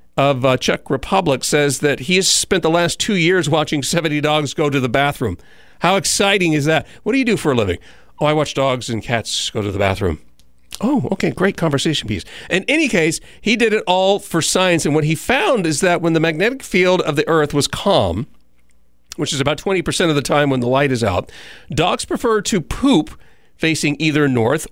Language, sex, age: English, male, 40-59